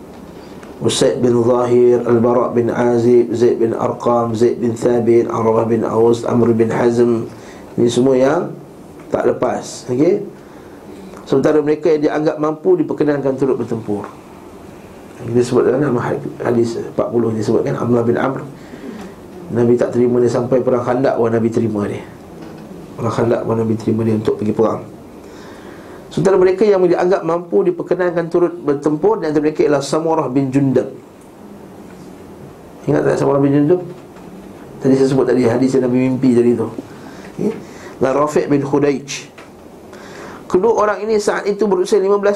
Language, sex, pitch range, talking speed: Malay, male, 120-175 Hz, 145 wpm